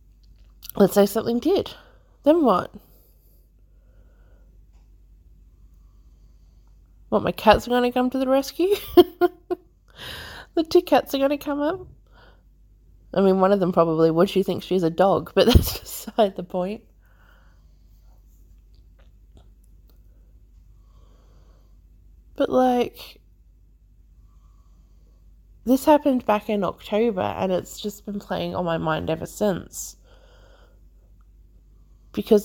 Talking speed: 110 wpm